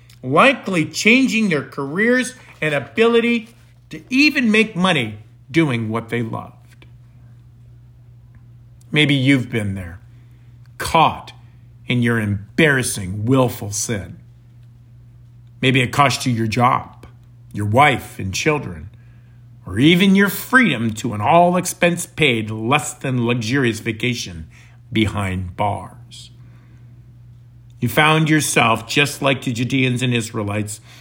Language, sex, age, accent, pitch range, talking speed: English, male, 50-69, American, 120-145 Hz, 105 wpm